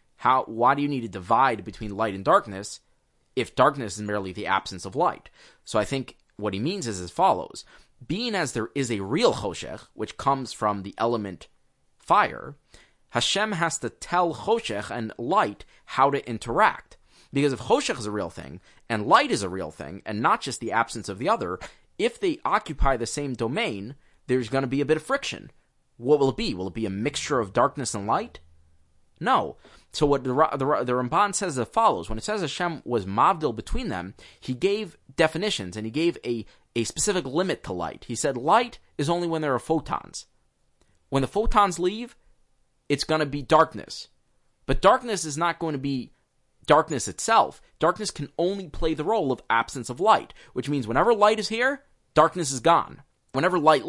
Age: 20-39